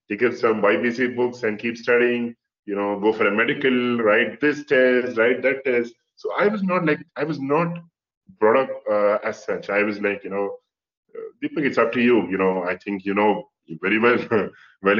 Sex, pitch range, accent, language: male, 100-150 Hz, Indian, English